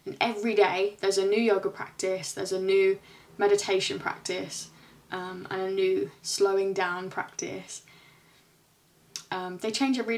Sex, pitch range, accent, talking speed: female, 195-230 Hz, British, 140 wpm